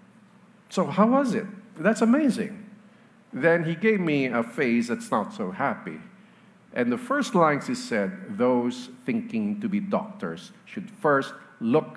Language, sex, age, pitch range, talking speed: English, male, 50-69, 155-215 Hz, 150 wpm